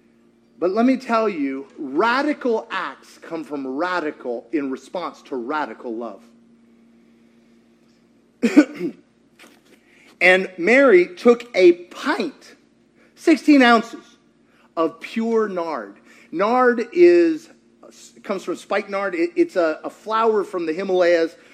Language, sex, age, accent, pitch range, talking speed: English, male, 40-59, American, 160-250 Hz, 110 wpm